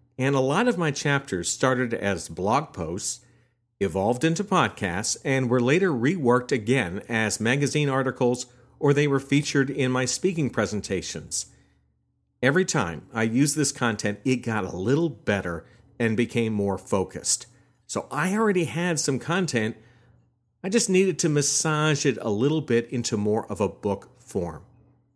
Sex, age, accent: male, 50-69, American